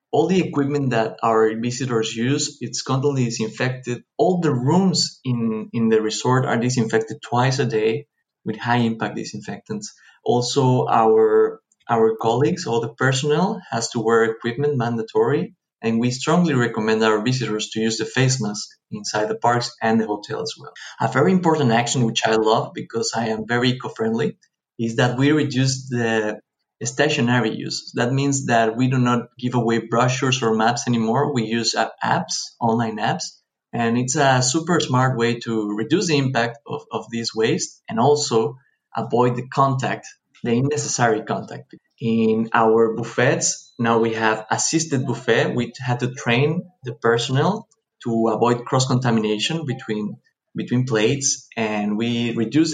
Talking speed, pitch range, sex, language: 155 wpm, 115-135 Hz, male, English